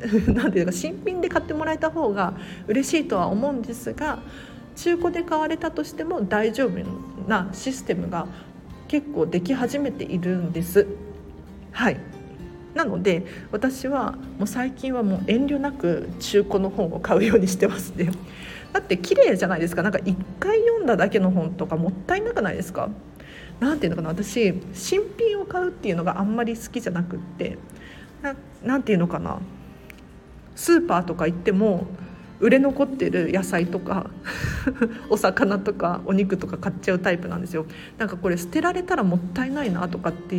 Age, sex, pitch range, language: 40-59, female, 180-260 Hz, Japanese